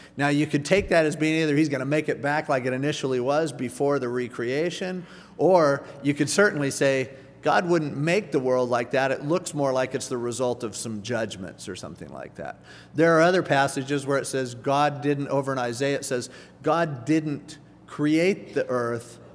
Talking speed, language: 200 wpm, English